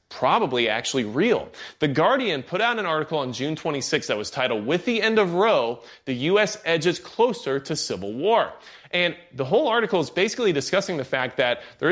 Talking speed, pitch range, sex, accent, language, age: 190 wpm, 130-195 Hz, male, American, English, 30-49